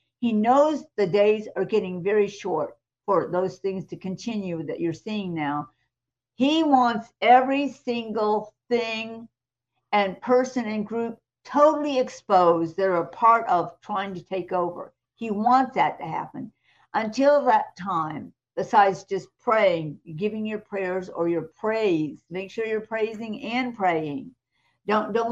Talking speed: 145 wpm